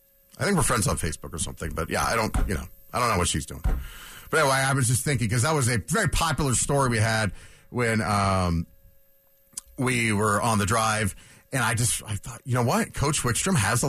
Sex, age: male, 40-59